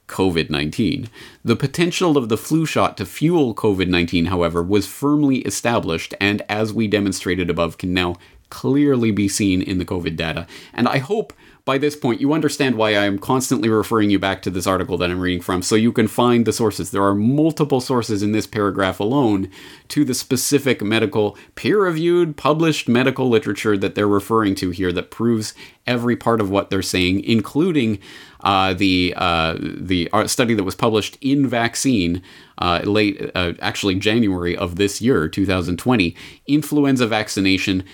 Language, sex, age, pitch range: English, male, 30-49, 90-120 Hz